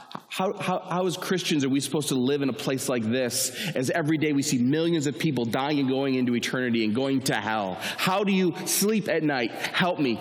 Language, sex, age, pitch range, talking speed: English, male, 30-49, 120-165 Hz, 235 wpm